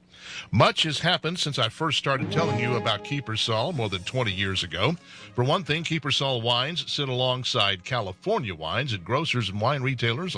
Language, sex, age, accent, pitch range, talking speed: English, male, 60-79, American, 110-145 Hz, 175 wpm